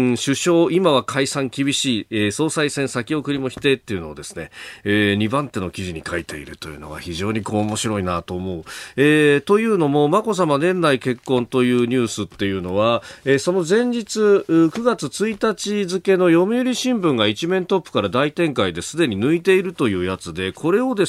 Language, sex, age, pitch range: Japanese, male, 40-59, 110-185 Hz